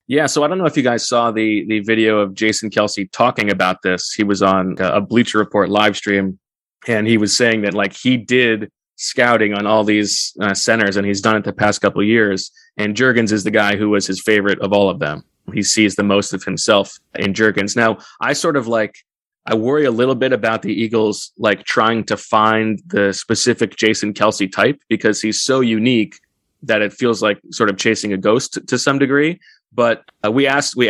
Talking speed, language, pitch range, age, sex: 220 wpm, English, 105-120 Hz, 20-39, male